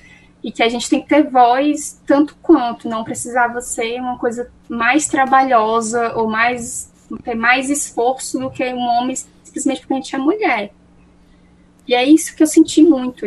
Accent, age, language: Brazilian, 10-29, Portuguese